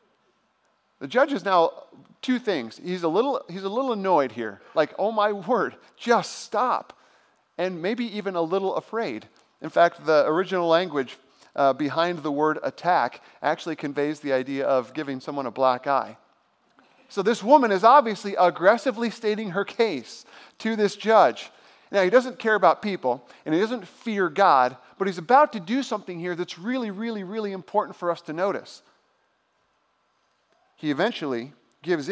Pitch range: 145-220 Hz